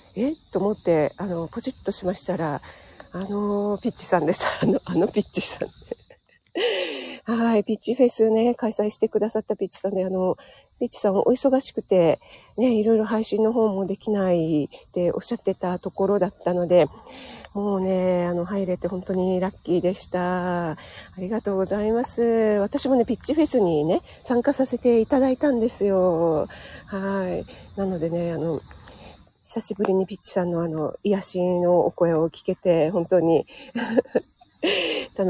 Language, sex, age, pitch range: Japanese, female, 40-59, 180-245 Hz